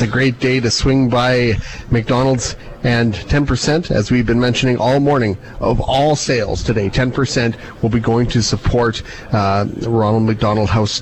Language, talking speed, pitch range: English, 160 wpm, 115-140 Hz